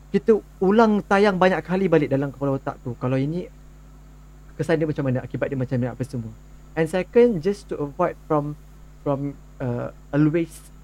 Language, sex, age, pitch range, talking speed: English, male, 30-49, 145-175 Hz, 170 wpm